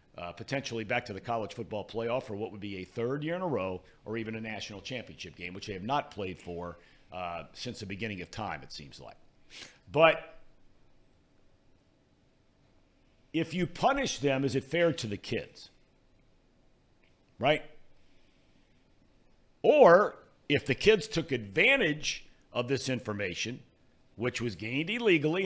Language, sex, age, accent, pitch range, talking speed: English, male, 50-69, American, 110-160 Hz, 150 wpm